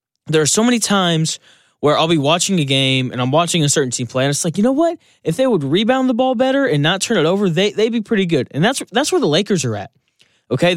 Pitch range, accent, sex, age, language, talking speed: 150-215 Hz, American, male, 10-29, English, 280 wpm